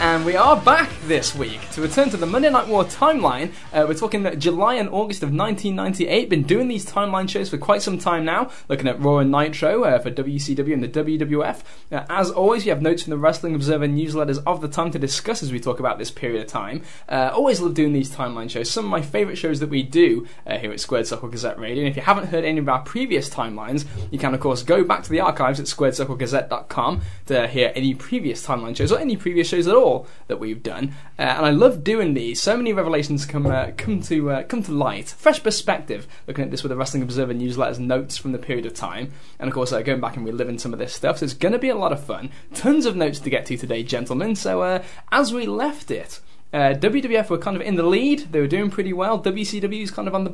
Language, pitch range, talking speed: English, 135-200 Hz, 250 wpm